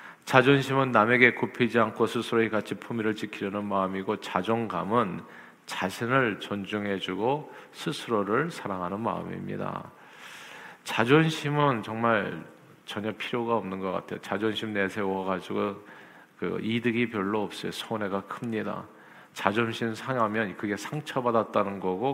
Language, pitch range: Korean, 100-120 Hz